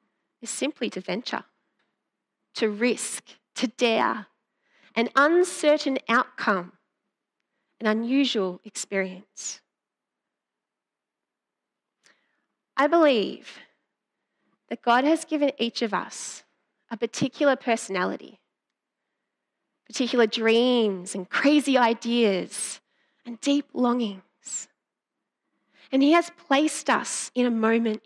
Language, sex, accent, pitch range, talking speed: English, female, Australian, 220-280 Hz, 90 wpm